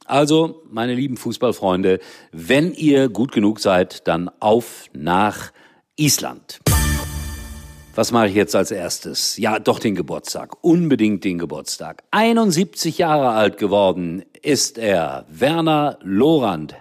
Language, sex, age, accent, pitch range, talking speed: German, male, 50-69, German, 85-130 Hz, 120 wpm